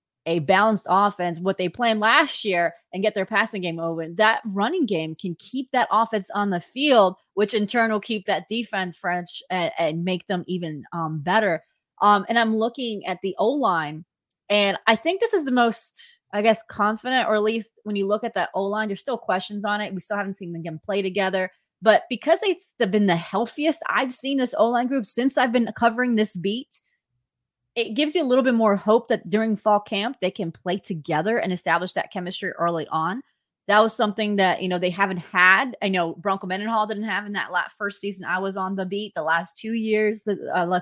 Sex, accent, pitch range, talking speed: female, American, 185-225 Hz, 215 wpm